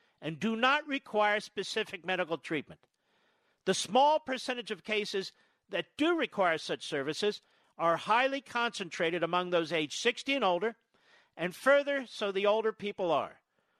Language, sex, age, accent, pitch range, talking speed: English, male, 50-69, American, 185-250 Hz, 145 wpm